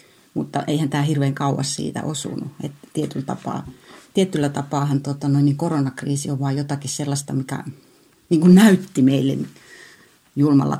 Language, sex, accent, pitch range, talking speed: Finnish, female, native, 140-150 Hz, 100 wpm